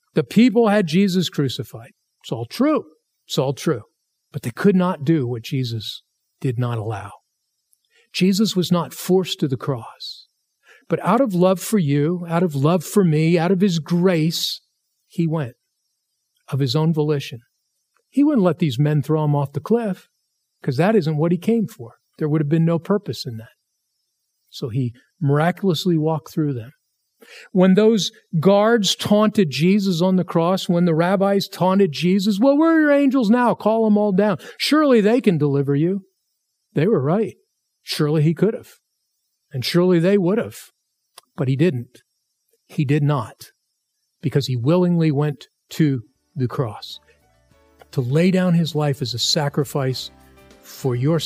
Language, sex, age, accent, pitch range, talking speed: English, male, 50-69, American, 140-195 Hz, 165 wpm